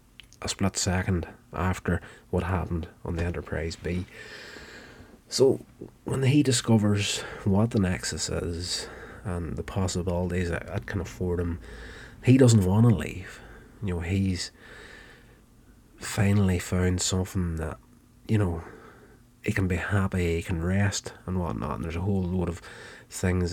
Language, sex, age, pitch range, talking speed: English, male, 30-49, 85-100 Hz, 140 wpm